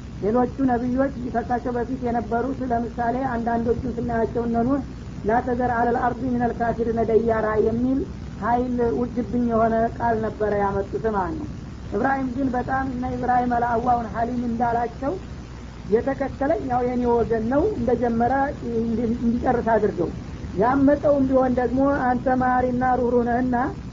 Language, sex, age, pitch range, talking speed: Amharic, female, 40-59, 230-250 Hz, 115 wpm